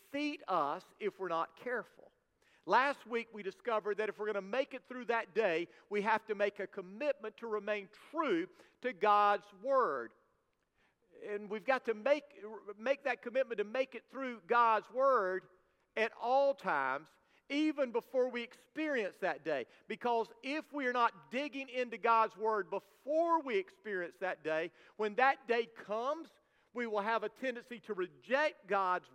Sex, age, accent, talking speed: male, 50-69, American, 165 wpm